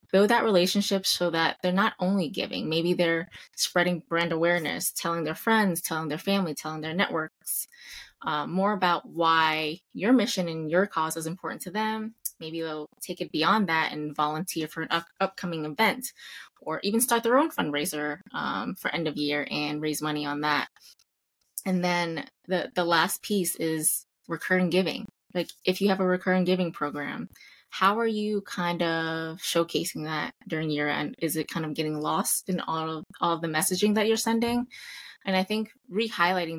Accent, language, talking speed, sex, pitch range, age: American, English, 180 wpm, female, 155-190 Hz, 20-39